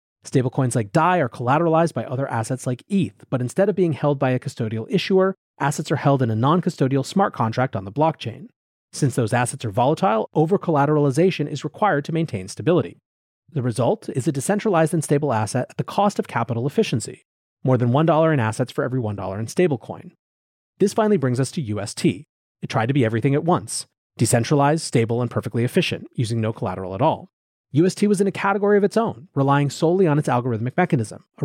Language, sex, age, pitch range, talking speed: English, male, 30-49, 120-165 Hz, 195 wpm